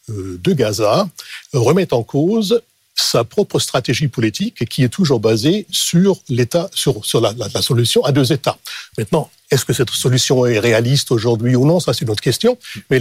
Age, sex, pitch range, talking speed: 60-79, male, 120-155 Hz, 190 wpm